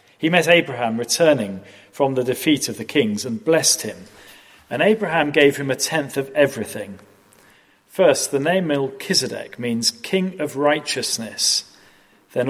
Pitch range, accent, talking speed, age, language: 105-150 Hz, British, 145 wpm, 40-59, English